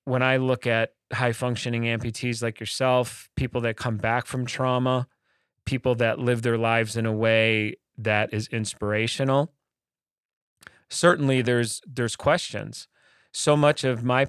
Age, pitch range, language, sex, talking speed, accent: 30-49, 115-130 Hz, English, male, 140 wpm, American